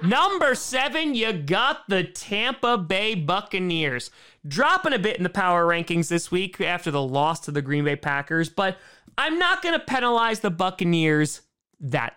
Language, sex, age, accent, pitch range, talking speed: English, male, 30-49, American, 150-215 Hz, 170 wpm